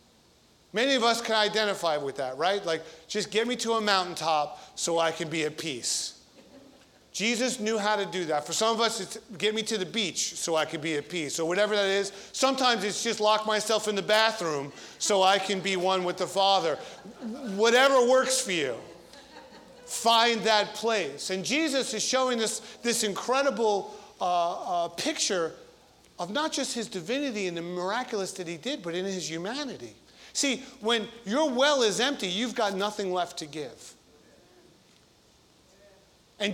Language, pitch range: English, 170-230 Hz